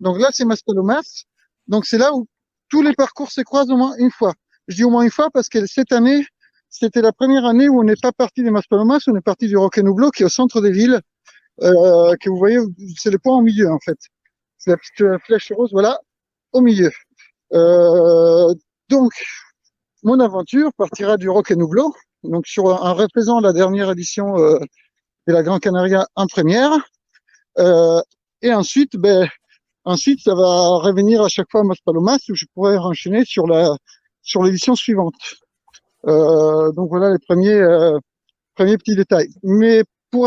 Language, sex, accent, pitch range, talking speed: French, male, French, 185-245 Hz, 190 wpm